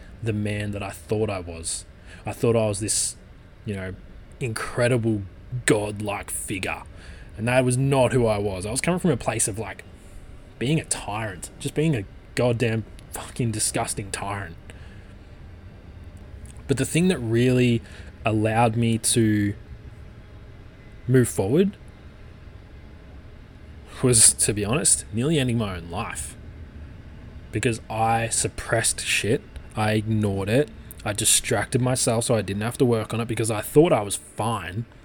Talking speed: 145 wpm